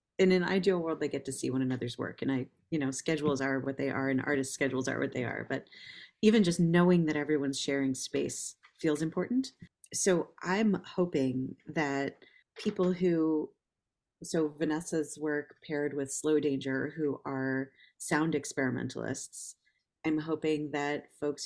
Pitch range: 135-160 Hz